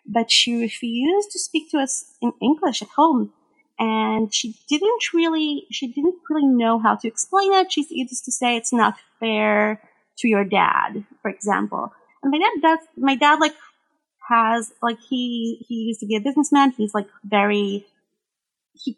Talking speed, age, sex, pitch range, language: 175 wpm, 30-49, female, 205-280 Hz, English